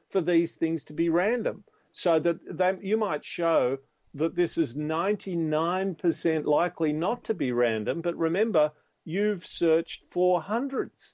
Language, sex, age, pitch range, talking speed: English, male, 50-69, 135-170 Hz, 140 wpm